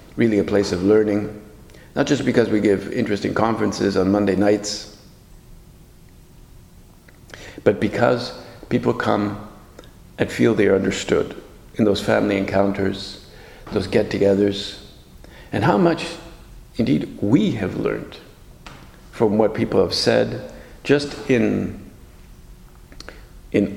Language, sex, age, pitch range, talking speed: English, male, 50-69, 95-110 Hz, 115 wpm